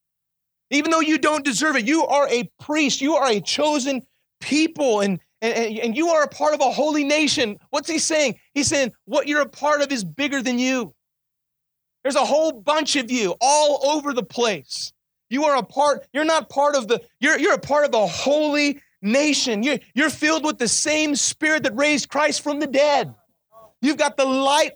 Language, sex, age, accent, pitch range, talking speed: English, male, 30-49, American, 255-300 Hz, 205 wpm